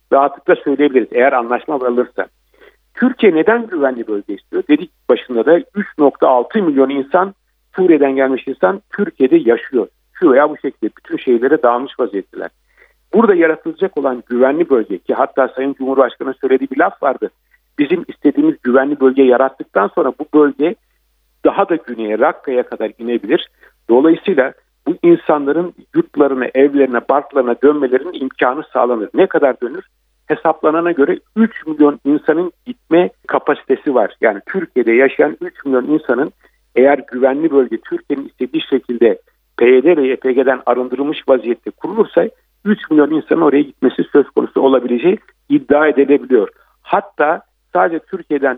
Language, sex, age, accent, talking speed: Turkish, male, 50-69, native, 130 wpm